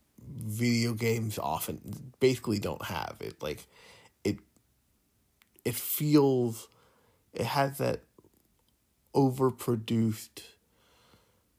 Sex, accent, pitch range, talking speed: male, American, 110-135 Hz, 80 wpm